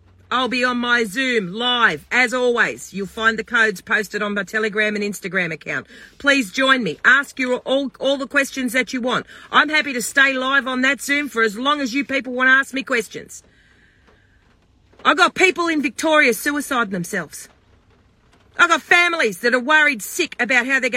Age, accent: 40-59, Australian